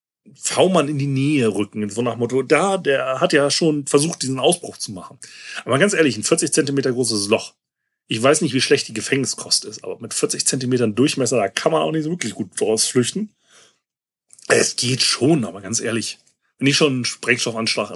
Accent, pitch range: German, 125-190 Hz